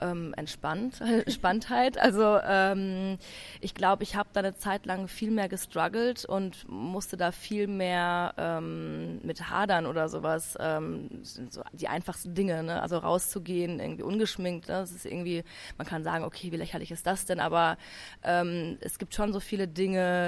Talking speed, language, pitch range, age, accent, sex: 170 wpm, German, 125-180 Hz, 20-39, German, female